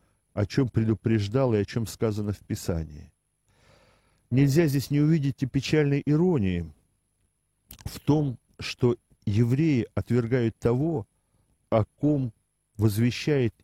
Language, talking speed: Russian, 110 wpm